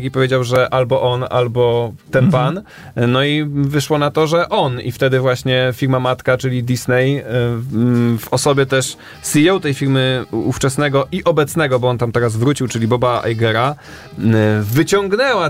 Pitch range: 125-150 Hz